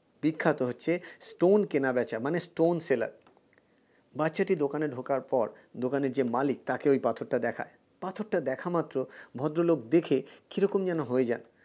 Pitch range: 135-190 Hz